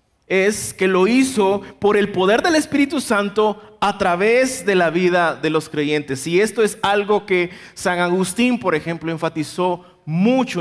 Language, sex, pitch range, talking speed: Spanish, male, 165-215 Hz, 165 wpm